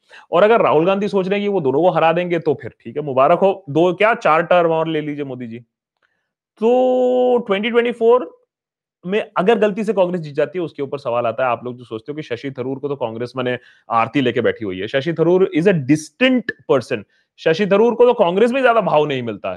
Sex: male